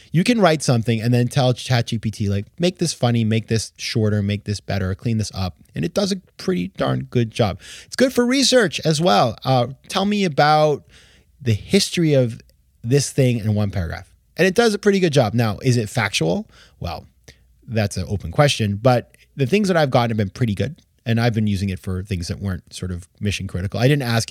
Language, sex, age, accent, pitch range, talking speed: English, male, 20-39, American, 100-140 Hz, 220 wpm